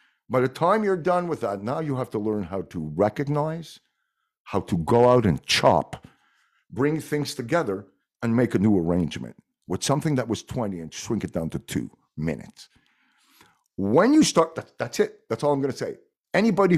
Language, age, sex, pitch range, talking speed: English, 50-69, male, 100-145 Hz, 190 wpm